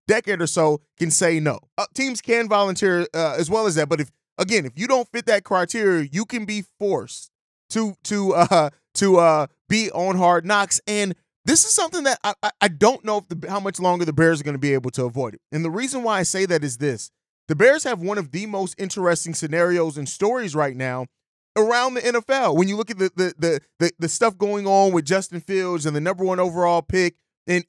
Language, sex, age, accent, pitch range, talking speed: English, male, 30-49, American, 165-200 Hz, 235 wpm